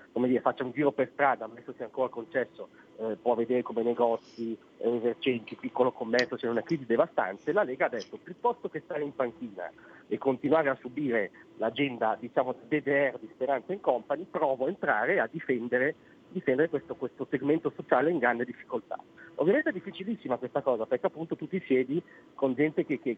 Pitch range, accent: 120-155 Hz, native